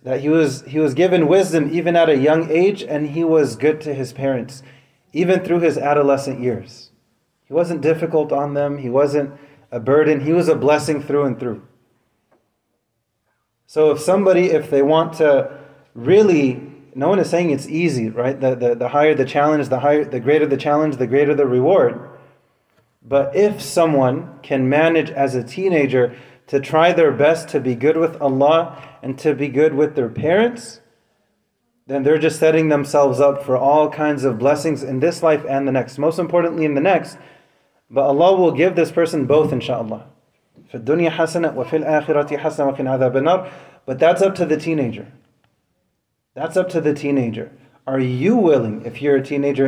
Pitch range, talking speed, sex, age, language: 135-165 Hz, 175 wpm, male, 30-49, English